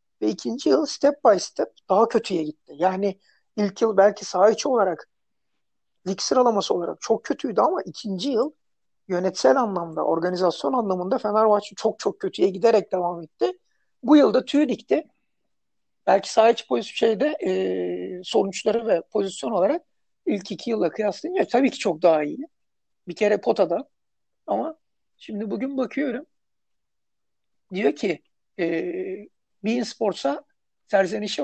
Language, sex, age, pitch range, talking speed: Turkish, male, 60-79, 205-255 Hz, 135 wpm